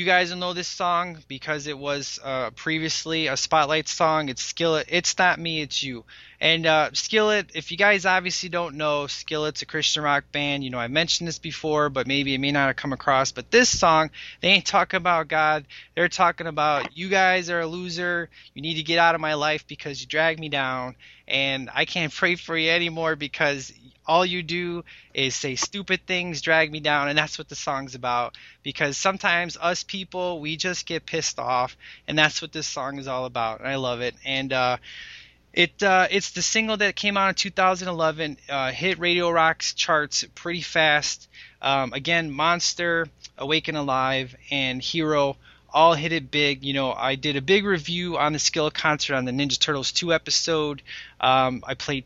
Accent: American